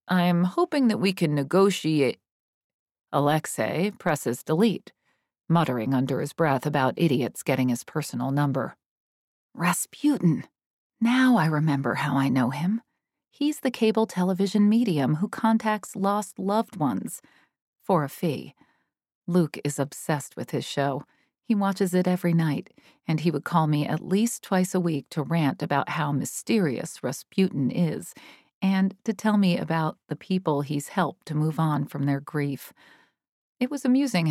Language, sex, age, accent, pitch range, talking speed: English, female, 40-59, American, 145-190 Hz, 150 wpm